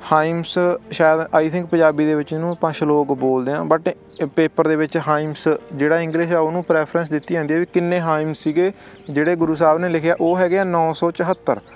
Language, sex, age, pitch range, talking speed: Punjabi, male, 20-39, 145-170 Hz, 185 wpm